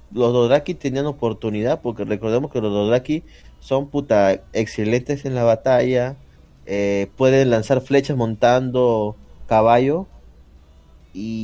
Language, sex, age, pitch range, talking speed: Spanish, male, 30-49, 100-150 Hz, 115 wpm